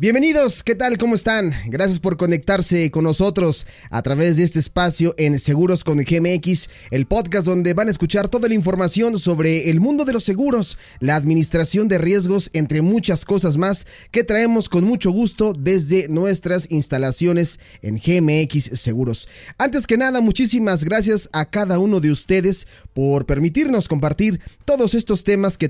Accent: Mexican